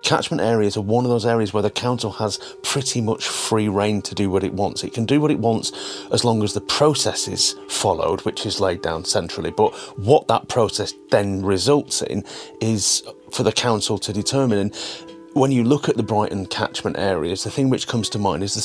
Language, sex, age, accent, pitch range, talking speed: English, male, 30-49, British, 100-120 Hz, 220 wpm